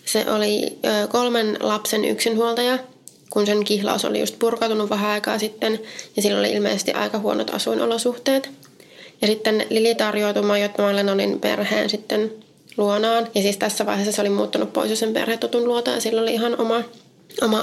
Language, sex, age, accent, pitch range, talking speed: Finnish, female, 20-39, native, 205-230 Hz, 160 wpm